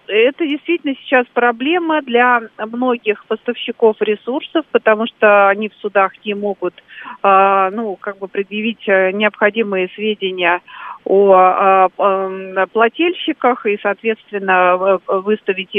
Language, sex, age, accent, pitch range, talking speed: Russian, female, 40-59, native, 200-240 Hz, 90 wpm